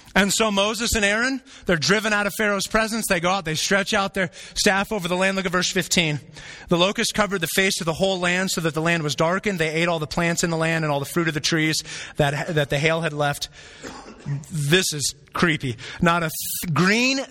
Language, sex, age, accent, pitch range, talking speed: English, male, 30-49, American, 120-185 Hz, 235 wpm